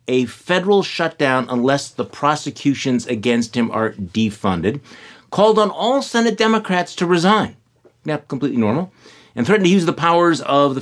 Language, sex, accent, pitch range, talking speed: English, male, American, 120-160 Hz, 155 wpm